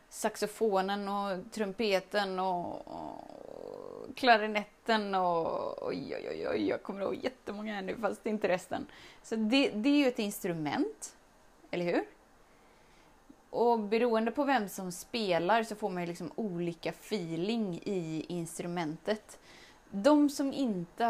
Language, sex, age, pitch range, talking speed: Swedish, female, 20-39, 170-235 Hz, 135 wpm